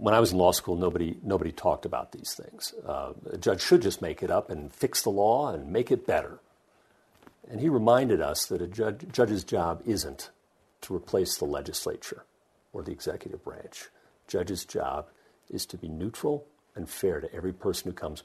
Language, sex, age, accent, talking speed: English, male, 50-69, American, 195 wpm